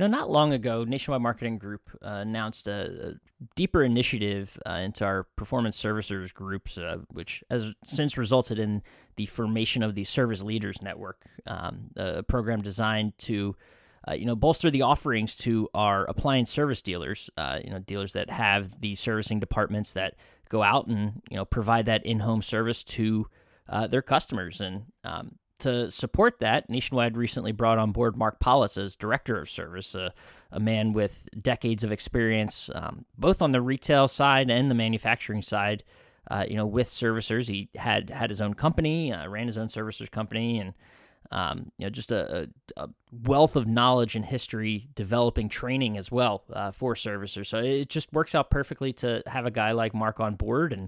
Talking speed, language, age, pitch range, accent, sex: 185 wpm, English, 20-39, 105-125 Hz, American, male